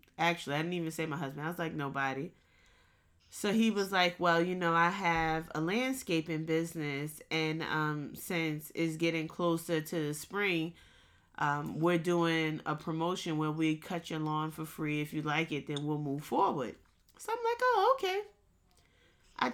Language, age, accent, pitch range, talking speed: English, 20-39, American, 155-200 Hz, 180 wpm